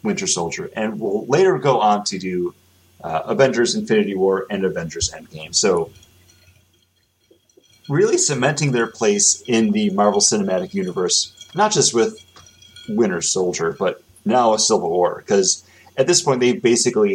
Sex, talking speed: male, 145 wpm